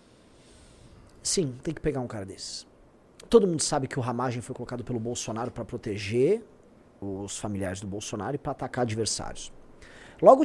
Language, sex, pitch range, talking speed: Portuguese, male, 125-190 Hz, 160 wpm